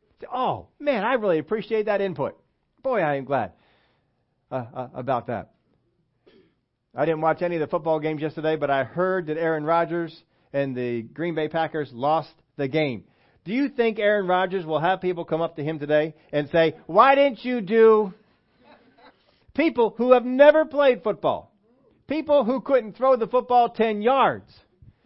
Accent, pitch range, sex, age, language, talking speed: American, 160-245 Hz, male, 40-59, English, 170 wpm